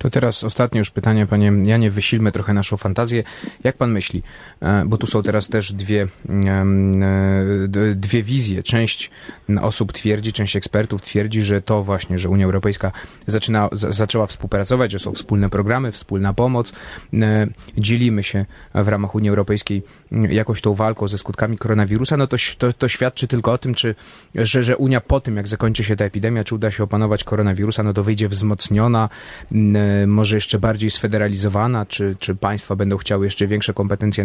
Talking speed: 165 wpm